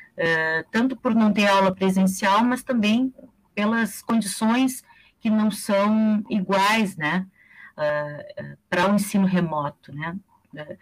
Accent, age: Brazilian, 40-59